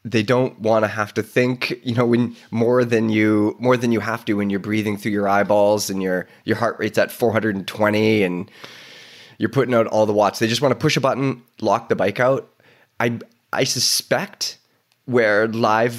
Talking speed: 205 wpm